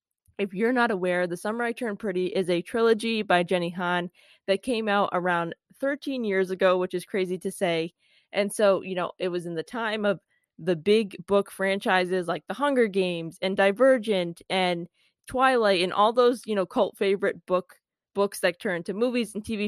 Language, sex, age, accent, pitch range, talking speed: English, female, 20-39, American, 180-210 Hz, 195 wpm